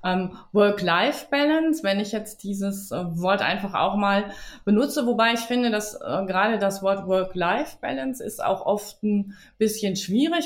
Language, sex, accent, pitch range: German, female, German, 185-240 Hz